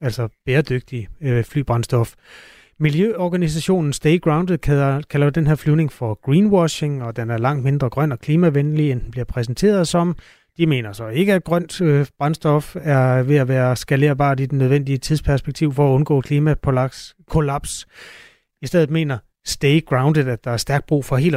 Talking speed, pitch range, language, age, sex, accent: 165 wpm, 130-155 Hz, Danish, 30-49, male, native